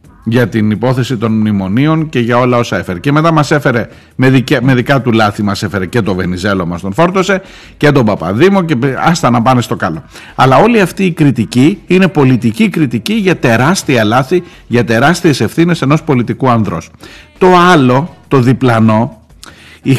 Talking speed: 175 wpm